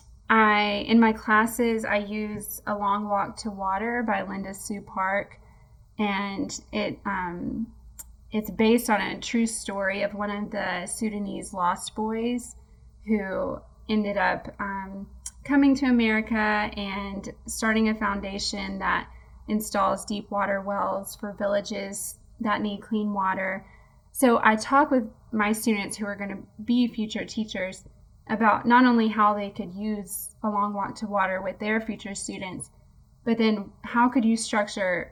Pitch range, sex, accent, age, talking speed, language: 200-225 Hz, female, American, 20-39, 150 wpm, English